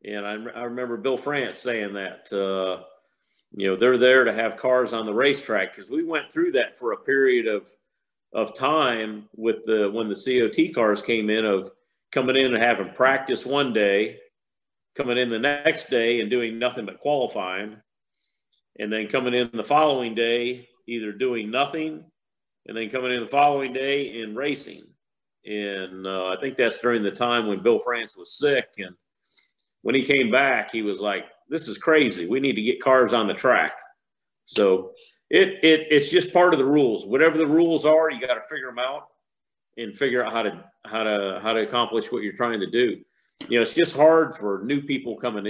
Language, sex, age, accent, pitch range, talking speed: English, male, 50-69, American, 110-145 Hz, 200 wpm